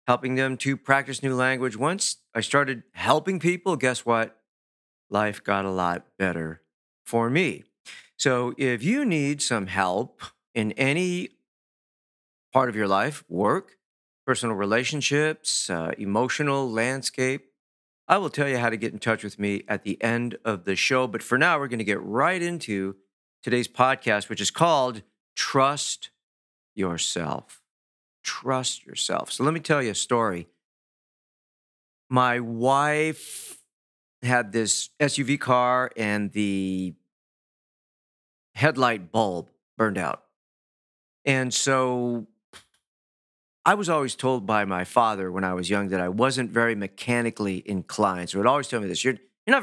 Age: 40-59